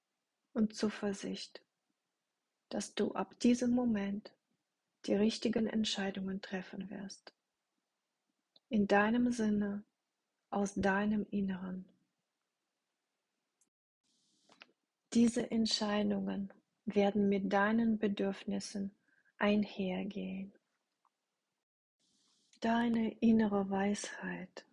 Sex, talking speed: female, 70 wpm